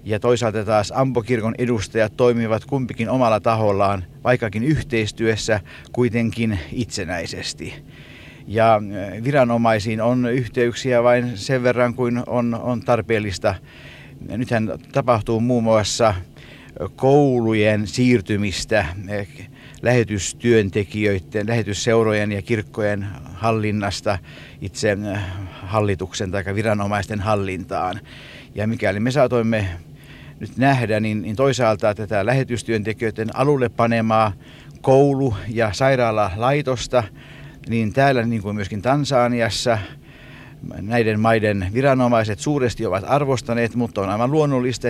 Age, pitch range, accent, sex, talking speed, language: 50-69, 105-125 Hz, native, male, 95 wpm, Finnish